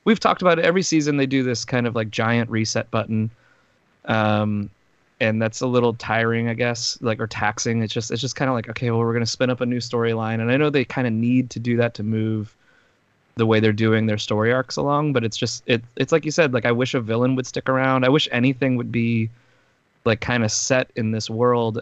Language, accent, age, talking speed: English, American, 20-39, 250 wpm